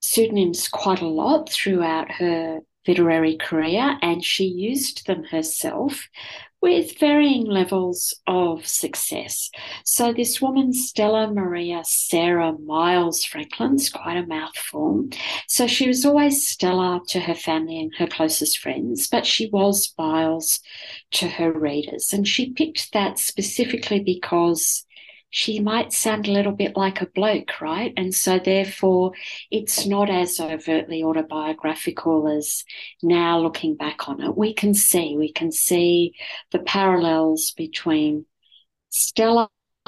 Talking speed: 135 wpm